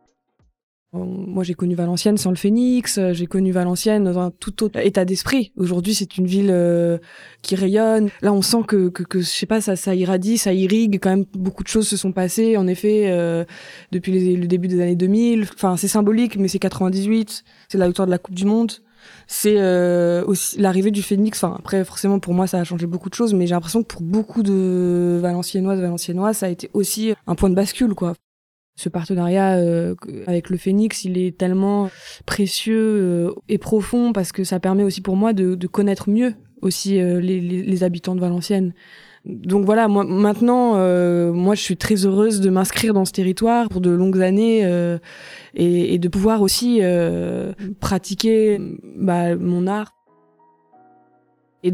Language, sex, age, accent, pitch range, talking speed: French, female, 20-39, French, 180-205 Hz, 195 wpm